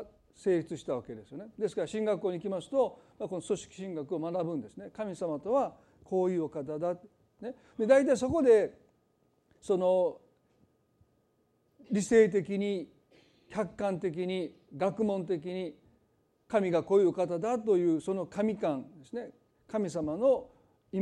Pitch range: 160-220 Hz